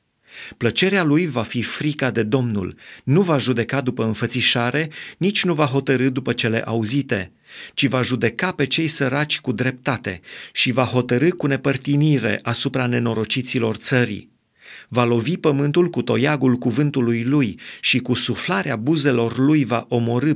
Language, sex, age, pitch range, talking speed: Romanian, male, 30-49, 120-150 Hz, 145 wpm